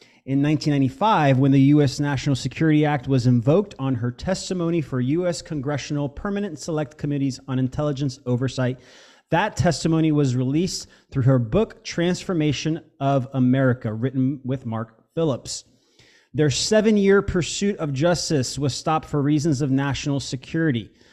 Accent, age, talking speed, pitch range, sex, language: American, 30-49, 135 wpm, 130-155 Hz, male, English